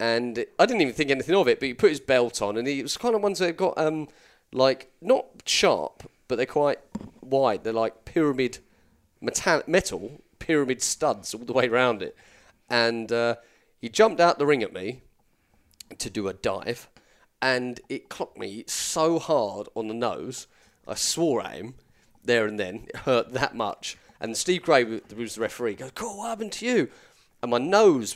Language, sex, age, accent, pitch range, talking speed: English, male, 40-59, British, 115-170 Hz, 195 wpm